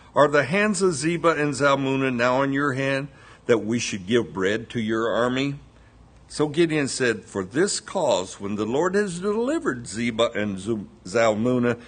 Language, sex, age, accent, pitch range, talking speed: English, male, 60-79, American, 115-160 Hz, 165 wpm